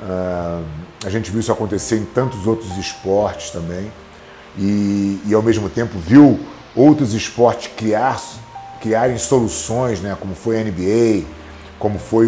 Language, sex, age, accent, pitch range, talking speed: English, male, 40-59, Brazilian, 90-110 Hz, 140 wpm